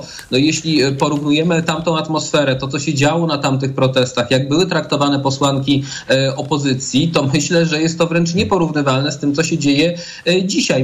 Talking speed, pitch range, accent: 160 wpm, 140-170 Hz, native